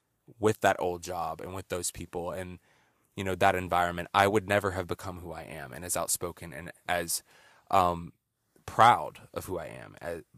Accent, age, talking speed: American, 20-39, 190 wpm